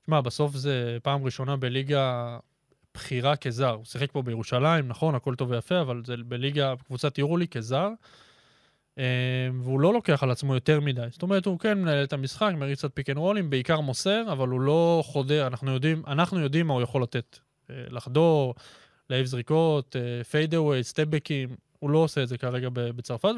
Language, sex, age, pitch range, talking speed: Hebrew, male, 20-39, 130-150 Hz, 175 wpm